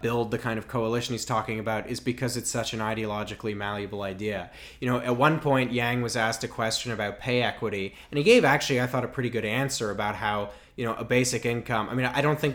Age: 20-39